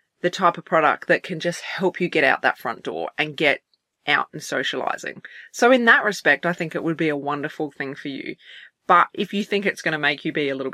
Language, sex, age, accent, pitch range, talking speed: English, female, 20-39, Australian, 150-195 Hz, 250 wpm